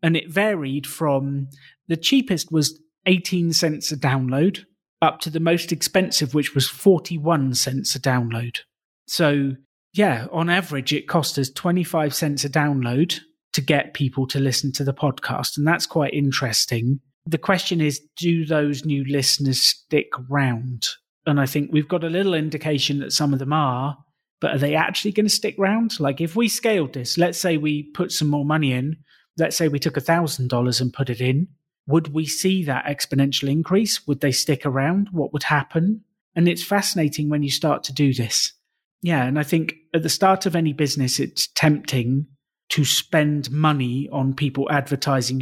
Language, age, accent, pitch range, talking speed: English, 30-49, British, 140-170 Hz, 180 wpm